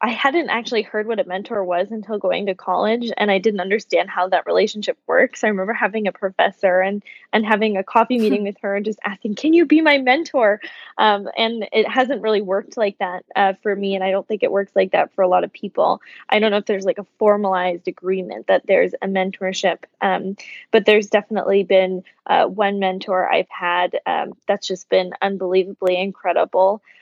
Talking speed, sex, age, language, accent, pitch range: 210 wpm, female, 10-29, English, American, 185-210 Hz